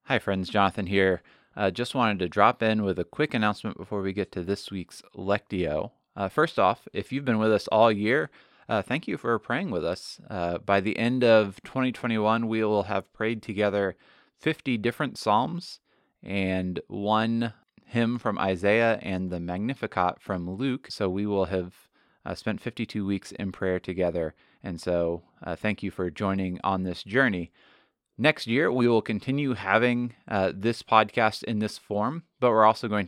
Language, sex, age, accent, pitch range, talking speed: English, male, 30-49, American, 95-115 Hz, 180 wpm